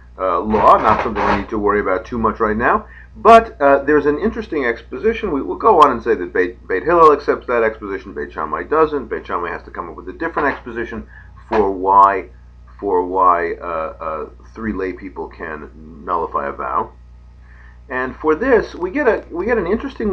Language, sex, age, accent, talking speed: English, male, 50-69, American, 205 wpm